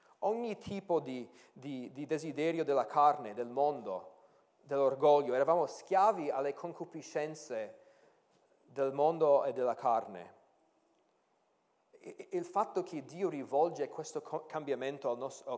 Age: 40-59